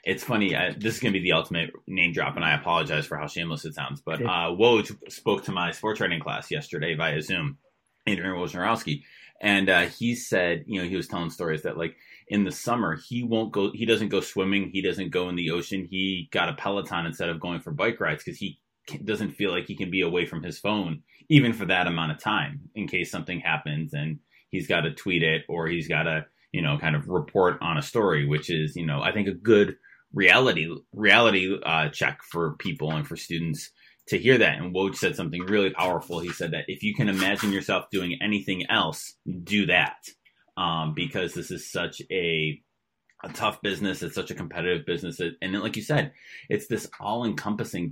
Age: 20-39